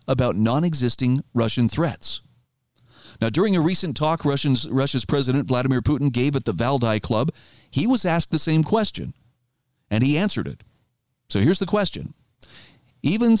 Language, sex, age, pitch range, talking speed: English, male, 40-59, 125-170 Hz, 150 wpm